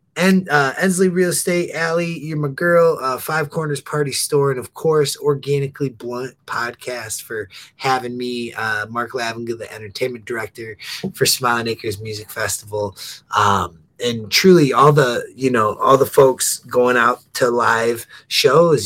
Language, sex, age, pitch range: English, male, 20-39, 115-150 Hz